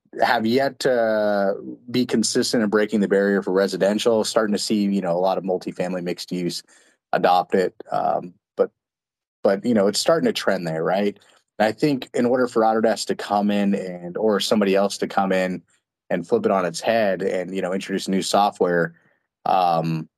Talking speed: 195 wpm